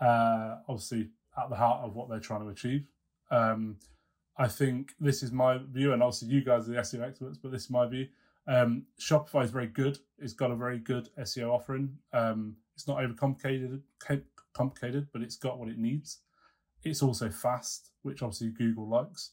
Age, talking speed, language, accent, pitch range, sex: 30-49, 190 wpm, English, British, 115-130 Hz, male